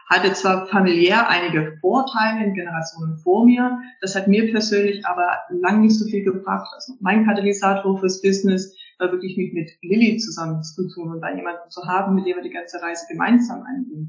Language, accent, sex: German, German, female